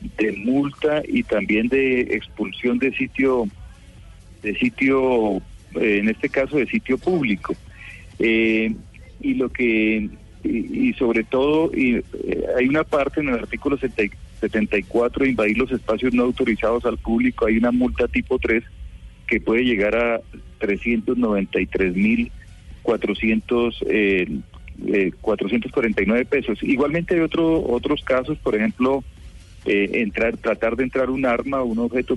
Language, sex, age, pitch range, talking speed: Spanish, male, 40-59, 105-135 Hz, 130 wpm